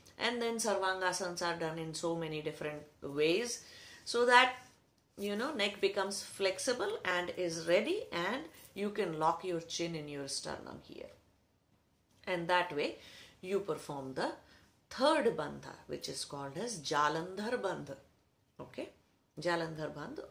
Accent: Indian